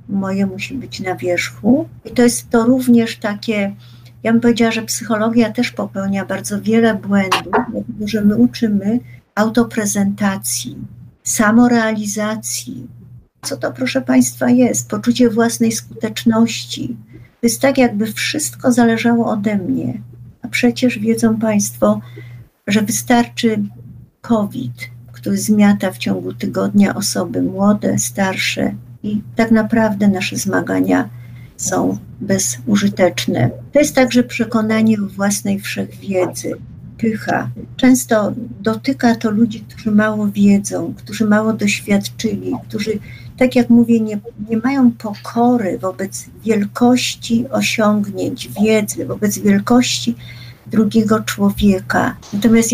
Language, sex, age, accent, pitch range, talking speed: Polish, female, 50-69, native, 195-230 Hz, 110 wpm